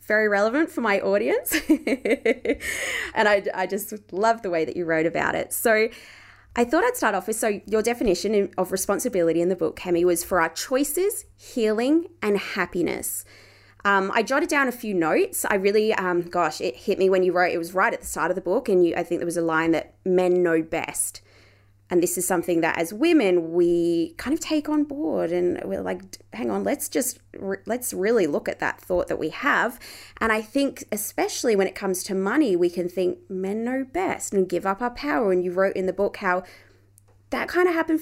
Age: 20-39